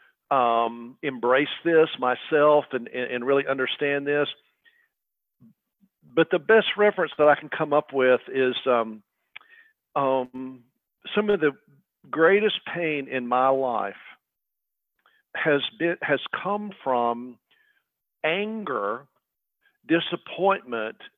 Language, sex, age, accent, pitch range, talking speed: English, male, 50-69, American, 125-155 Hz, 105 wpm